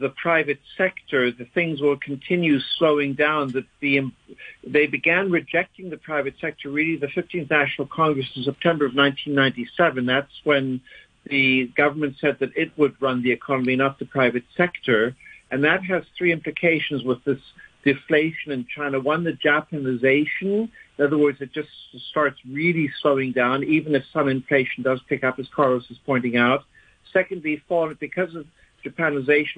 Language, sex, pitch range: English, male, 135-155 Hz